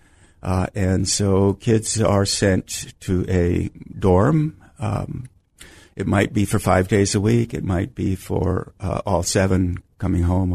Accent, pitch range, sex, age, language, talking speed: American, 95-115 Hz, male, 50-69, English, 155 wpm